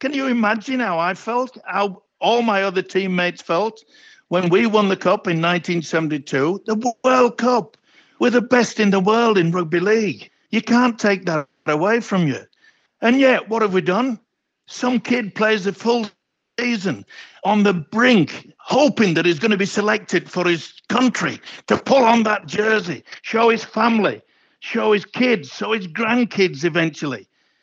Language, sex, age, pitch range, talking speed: English, male, 60-79, 155-220 Hz, 170 wpm